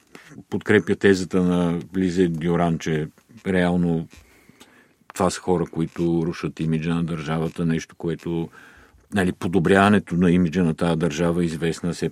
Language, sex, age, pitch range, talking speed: Bulgarian, male, 50-69, 85-100 Hz, 135 wpm